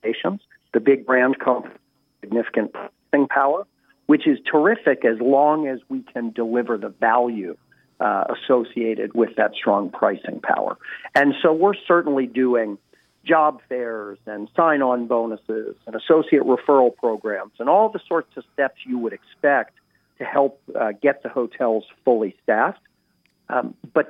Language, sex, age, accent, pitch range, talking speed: English, male, 50-69, American, 115-140 Hz, 145 wpm